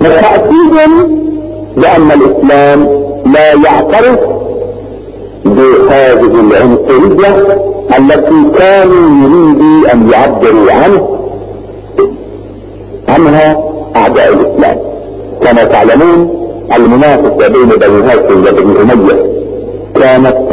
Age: 50-69